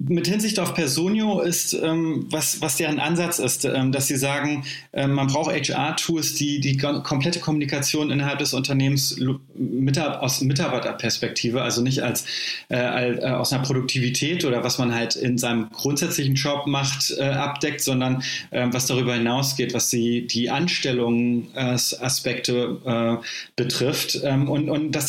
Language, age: German, 30-49